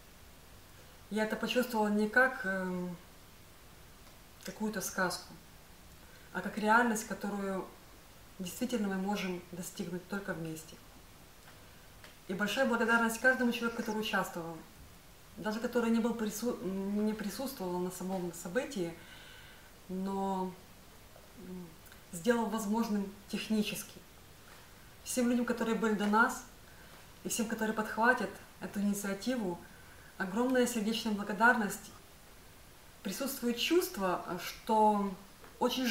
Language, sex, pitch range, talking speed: Russian, female, 190-235 Hz, 90 wpm